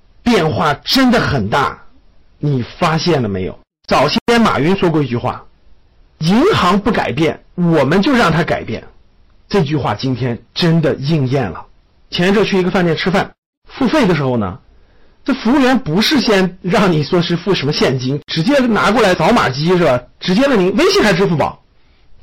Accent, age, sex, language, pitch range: native, 50-69, male, Chinese, 145-235 Hz